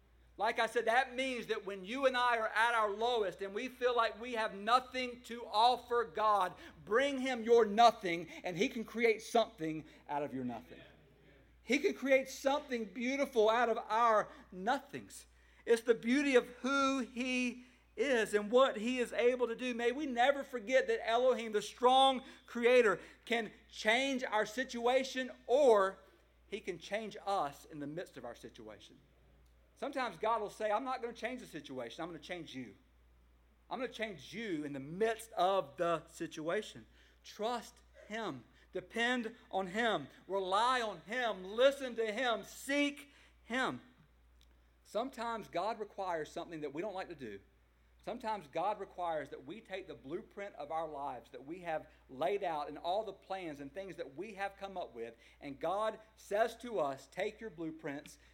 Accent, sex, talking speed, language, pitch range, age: American, male, 175 wpm, English, 160-240 Hz, 50-69